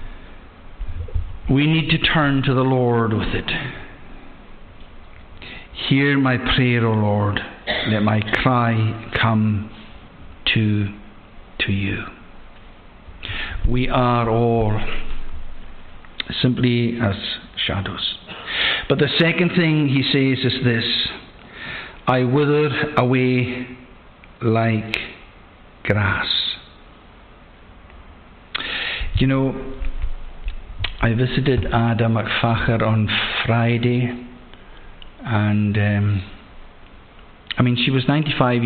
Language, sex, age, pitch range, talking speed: English, male, 60-79, 105-125 Hz, 85 wpm